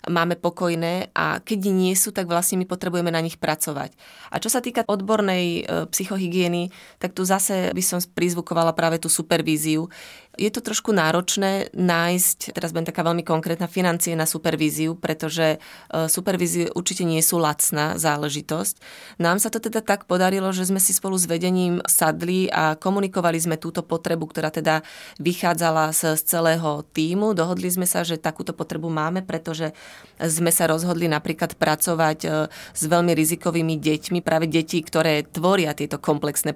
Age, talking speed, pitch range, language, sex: 20-39, 160 wpm, 160-180 Hz, Slovak, female